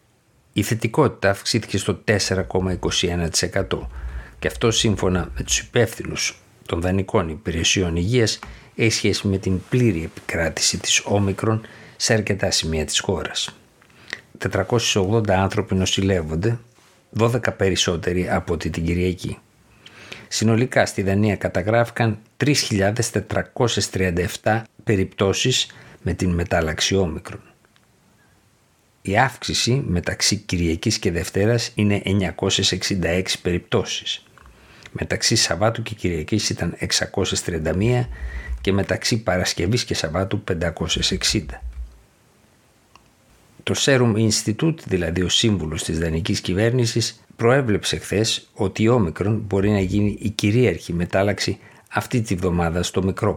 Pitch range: 90-110 Hz